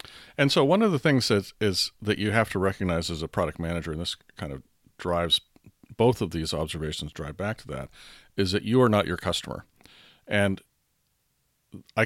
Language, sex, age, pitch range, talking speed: English, male, 40-59, 80-105 Hz, 195 wpm